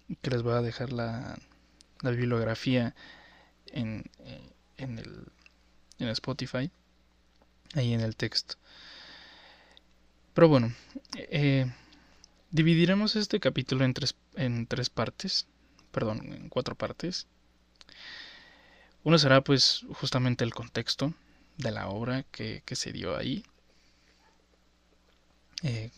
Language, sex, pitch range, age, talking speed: Spanish, male, 105-130 Hz, 20-39, 110 wpm